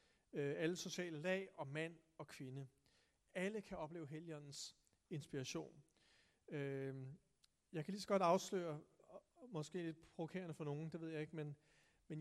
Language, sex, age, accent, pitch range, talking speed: Danish, male, 40-59, native, 150-185 Hz, 140 wpm